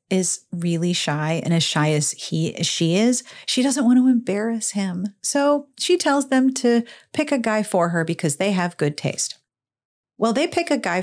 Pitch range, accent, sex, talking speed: 165-250 Hz, American, female, 200 wpm